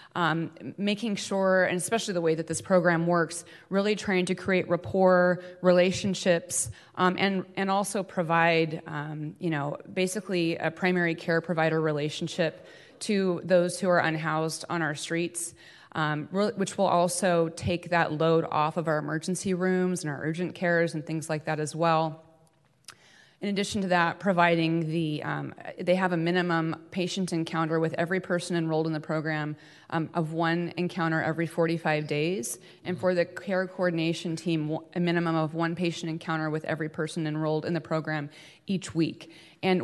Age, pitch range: 30-49, 155-175 Hz